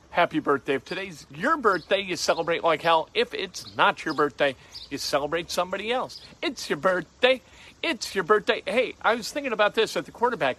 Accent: American